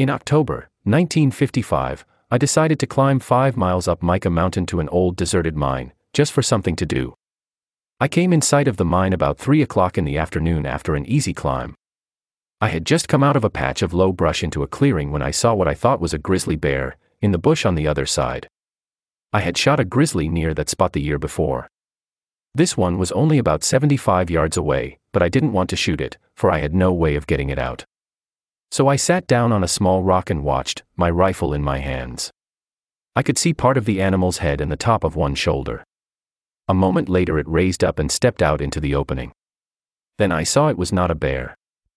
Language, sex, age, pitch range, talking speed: English, male, 40-59, 80-130 Hz, 220 wpm